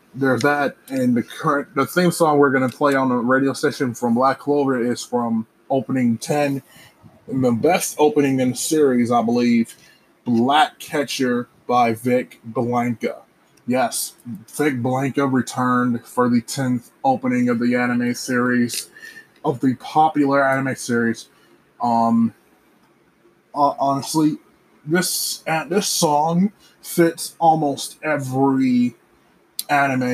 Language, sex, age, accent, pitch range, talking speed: English, male, 20-39, American, 120-150 Hz, 125 wpm